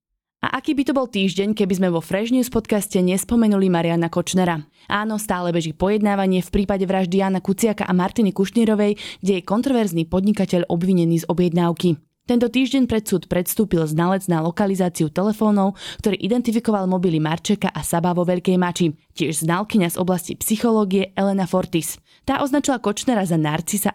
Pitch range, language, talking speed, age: 170-210 Hz, Slovak, 160 wpm, 20-39